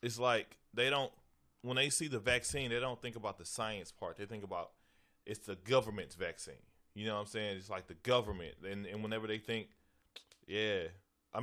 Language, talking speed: English, 205 wpm